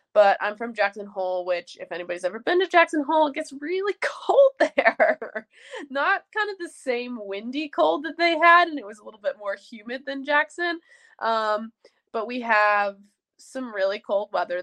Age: 20-39